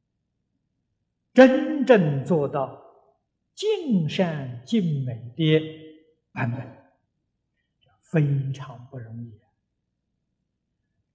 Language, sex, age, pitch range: Chinese, male, 50-69, 130-195 Hz